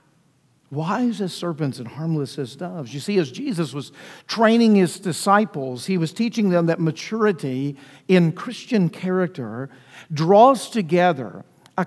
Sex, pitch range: male, 135-195 Hz